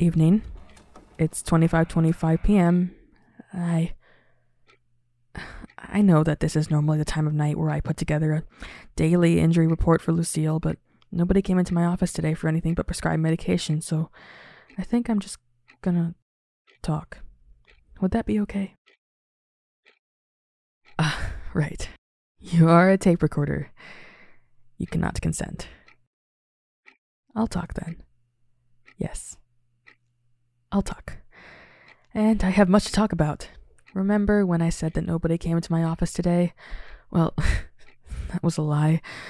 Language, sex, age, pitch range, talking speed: English, female, 20-39, 155-195 Hz, 130 wpm